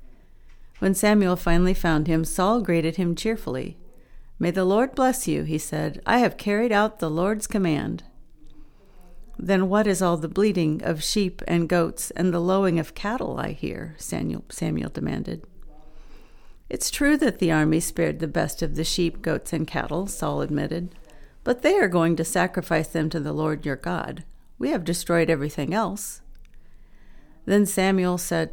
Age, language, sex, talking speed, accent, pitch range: 50-69, English, female, 165 wpm, American, 165-205 Hz